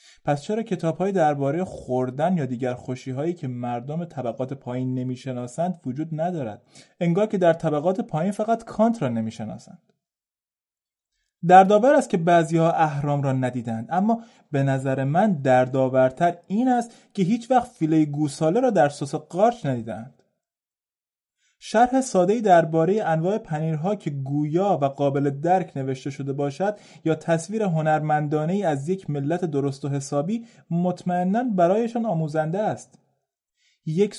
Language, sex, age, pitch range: Persian, male, 30-49, 140-185 Hz